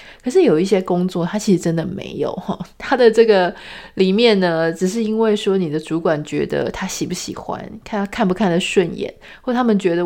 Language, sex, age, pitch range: Chinese, female, 30-49, 180-225 Hz